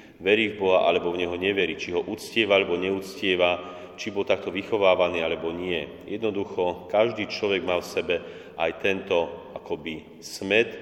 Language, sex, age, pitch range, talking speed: Slovak, male, 40-59, 90-110 Hz, 150 wpm